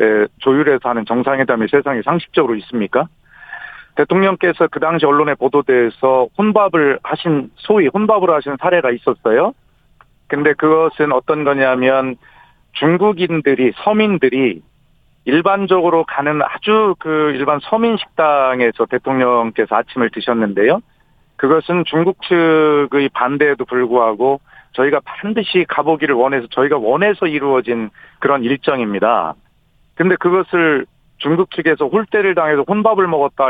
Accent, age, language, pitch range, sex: native, 40-59, Korean, 130-175 Hz, male